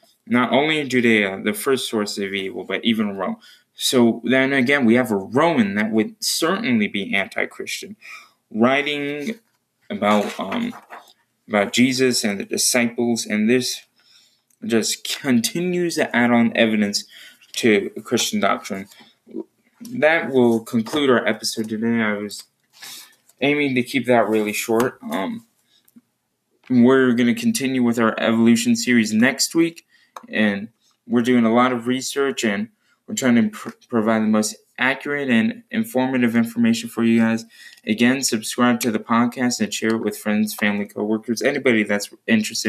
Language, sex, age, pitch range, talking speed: English, male, 20-39, 110-155 Hz, 150 wpm